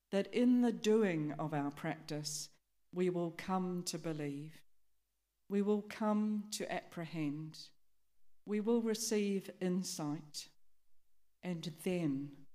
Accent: British